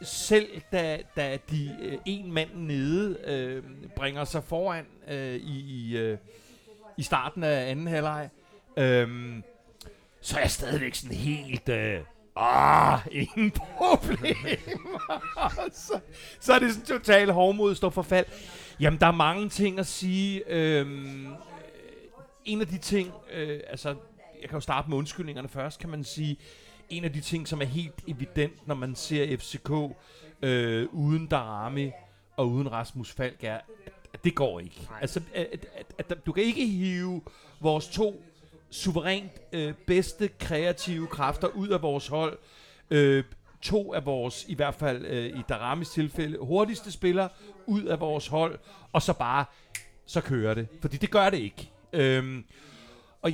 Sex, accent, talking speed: male, native, 155 wpm